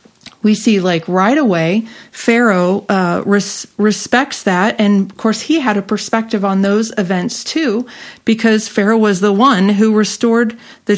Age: 40-59